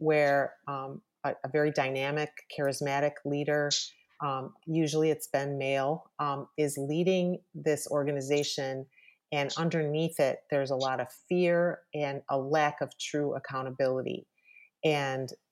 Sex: female